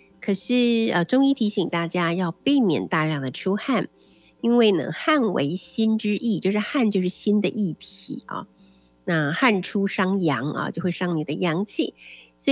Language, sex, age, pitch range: Chinese, female, 50-69, 170-235 Hz